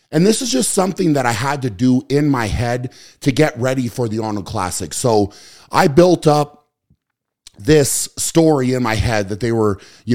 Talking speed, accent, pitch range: 195 wpm, American, 110-145 Hz